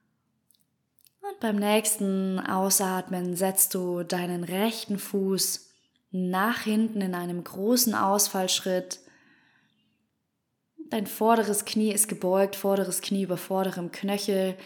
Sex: female